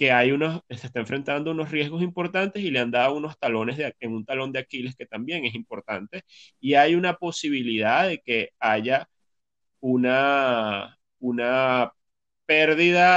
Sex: male